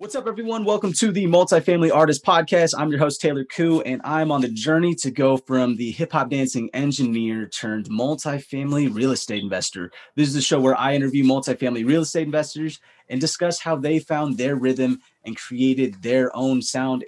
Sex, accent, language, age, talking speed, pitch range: male, American, English, 30-49, 190 wpm, 130-160 Hz